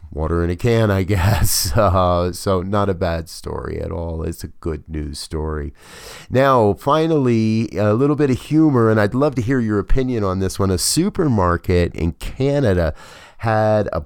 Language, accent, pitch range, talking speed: English, American, 85-120 Hz, 180 wpm